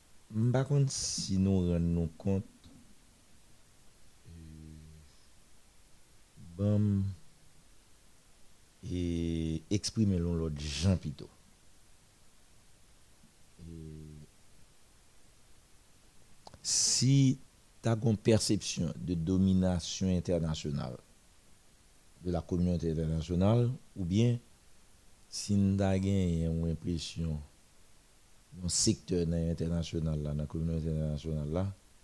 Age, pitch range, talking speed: 60-79, 80-105 Hz, 65 wpm